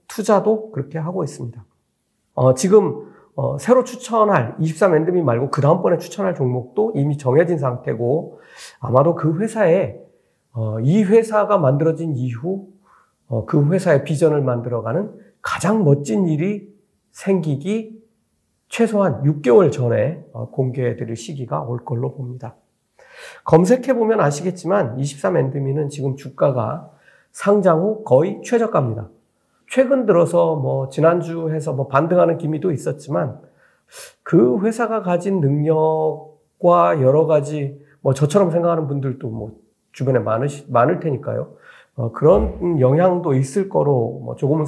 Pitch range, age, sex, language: 130-190 Hz, 40-59, male, Korean